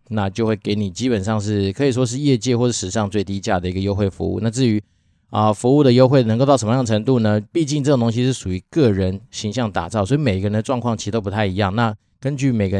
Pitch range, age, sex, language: 100-120 Hz, 20-39, male, Chinese